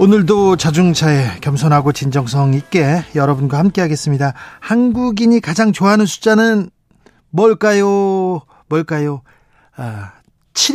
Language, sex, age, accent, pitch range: Korean, male, 40-59, native, 140-205 Hz